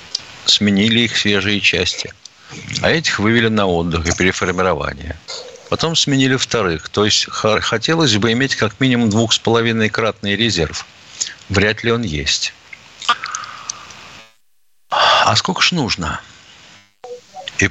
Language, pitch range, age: Russian, 105-150 Hz, 60-79